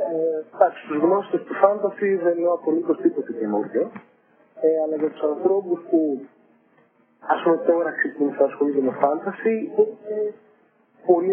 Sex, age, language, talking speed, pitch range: male, 50-69, Greek, 145 wpm, 140-205 Hz